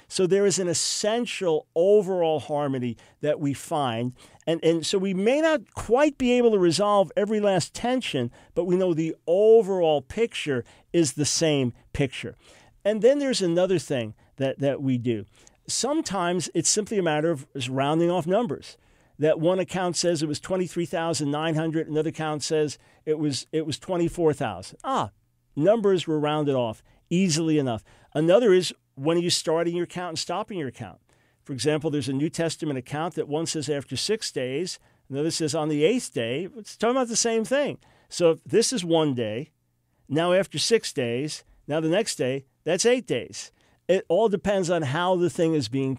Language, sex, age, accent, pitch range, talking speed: English, male, 50-69, American, 140-190 Hz, 175 wpm